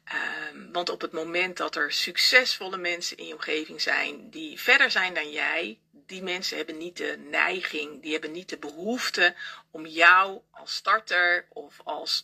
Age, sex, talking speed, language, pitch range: 40-59, female, 165 wpm, Dutch, 165-225 Hz